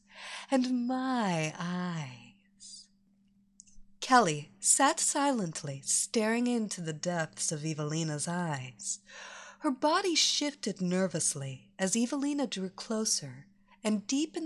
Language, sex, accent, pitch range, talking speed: English, female, American, 175-250 Hz, 100 wpm